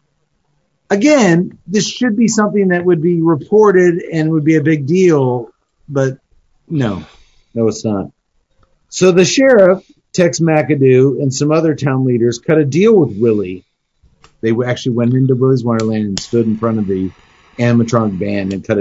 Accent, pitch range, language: American, 125-180 Hz, English